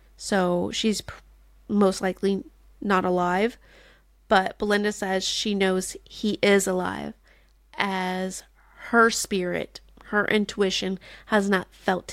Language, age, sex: English, 30-49, female